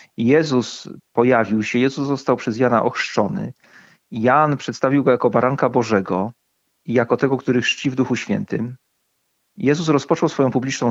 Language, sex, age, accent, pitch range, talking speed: Polish, male, 40-59, native, 120-140 Hz, 145 wpm